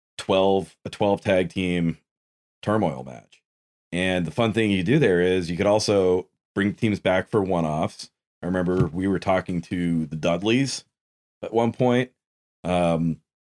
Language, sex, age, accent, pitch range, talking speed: English, male, 30-49, American, 85-105 Hz, 160 wpm